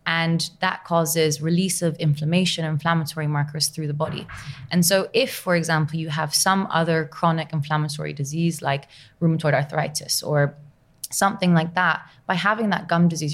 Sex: female